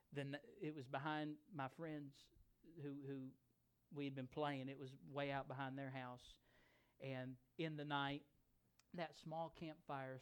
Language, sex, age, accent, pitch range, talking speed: English, male, 40-59, American, 135-180 Hz, 145 wpm